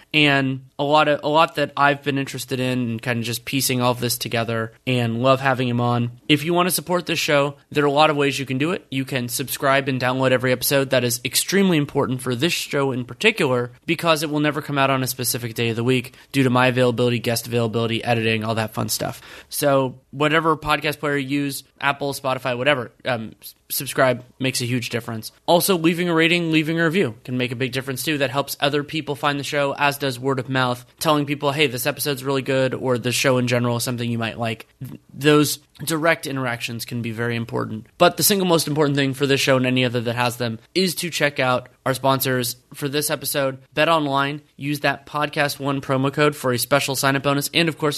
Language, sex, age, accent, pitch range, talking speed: English, male, 20-39, American, 125-150 Hz, 235 wpm